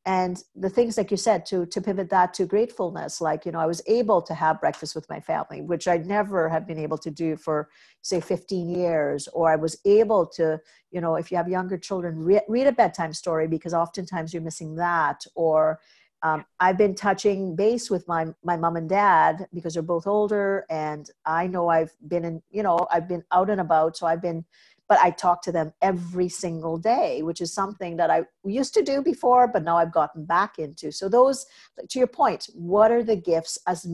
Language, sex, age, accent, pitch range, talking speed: English, female, 50-69, American, 165-195 Hz, 215 wpm